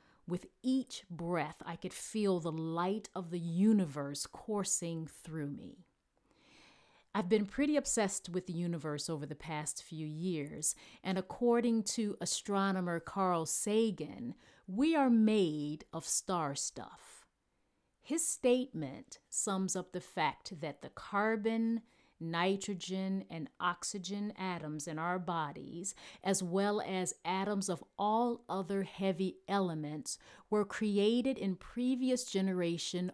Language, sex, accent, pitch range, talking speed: Ukrainian, female, American, 165-205 Hz, 125 wpm